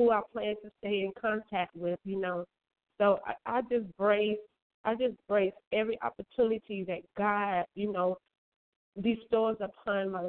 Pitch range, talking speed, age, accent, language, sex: 195-230 Hz, 155 wpm, 30-49, American, English, female